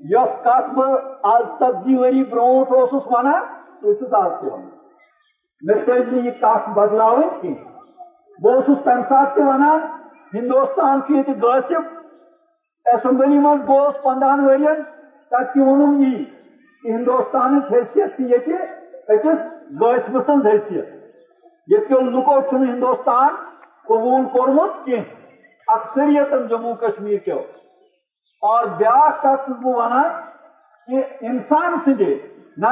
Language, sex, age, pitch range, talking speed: Urdu, male, 50-69, 255-305 Hz, 85 wpm